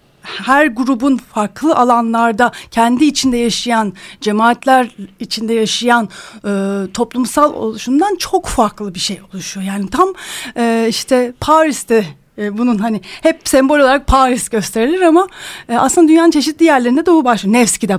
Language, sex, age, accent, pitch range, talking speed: Turkish, female, 40-59, native, 220-310 Hz, 135 wpm